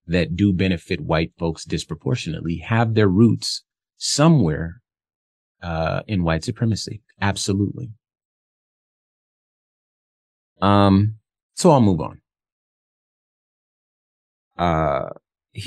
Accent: American